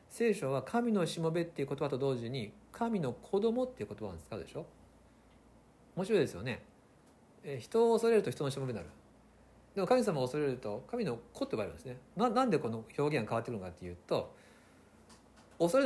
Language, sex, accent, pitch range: Japanese, male, native, 115-175 Hz